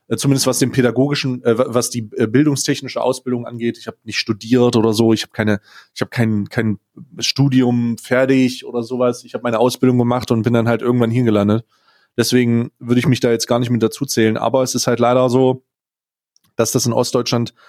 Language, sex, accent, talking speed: German, male, German, 185 wpm